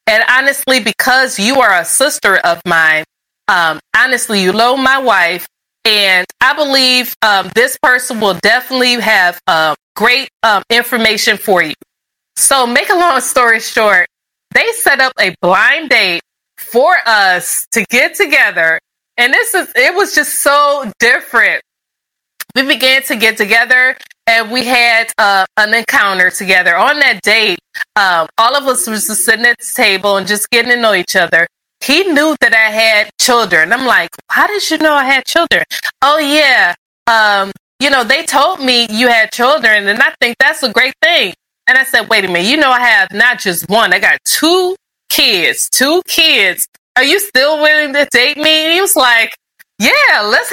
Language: English